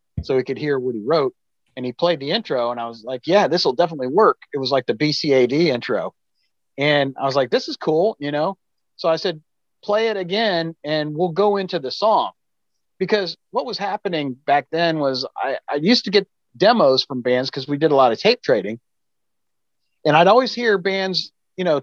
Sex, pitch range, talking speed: male, 140-185 Hz, 215 wpm